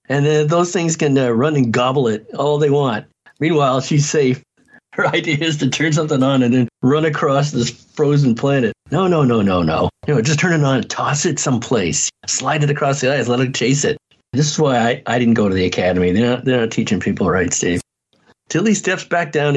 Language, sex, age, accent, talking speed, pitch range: English, male, 50-69, American, 235 wpm, 120-155 Hz